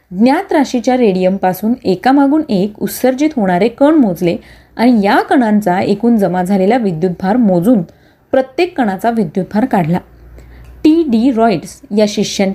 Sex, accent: female, native